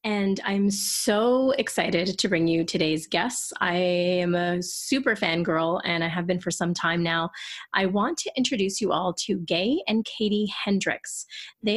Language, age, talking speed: English, 30-49, 180 wpm